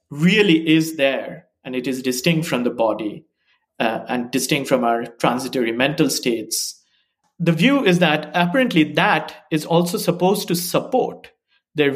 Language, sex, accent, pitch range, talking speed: English, male, Indian, 135-175 Hz, 150 wpm